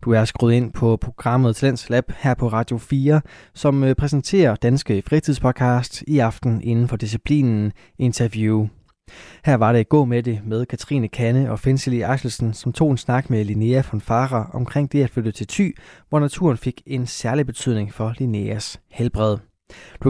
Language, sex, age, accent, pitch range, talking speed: Danish, male, 20-39, native, 110-135 Hz, 175 wpm